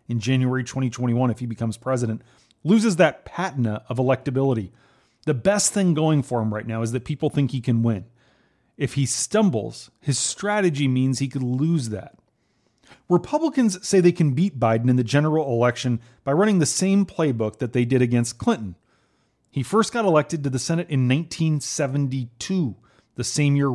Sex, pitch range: male, 115-155 Hz